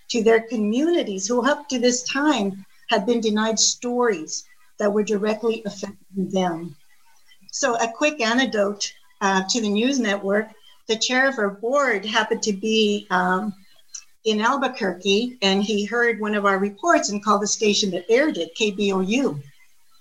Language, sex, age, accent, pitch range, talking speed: English, female, 60-79, American, 200-240 Hz, 155 wpm